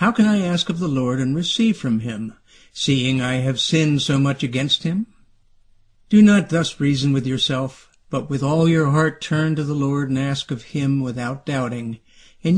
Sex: male